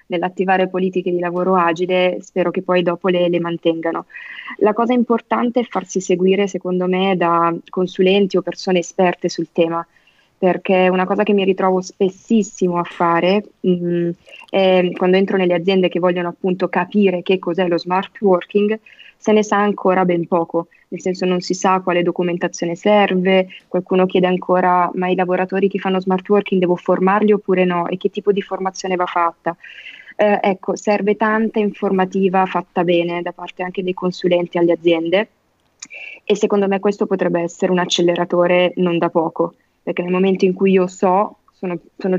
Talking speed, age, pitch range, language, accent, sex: 170 wpm, 20-39, 175-195 Hz, Italian, native, female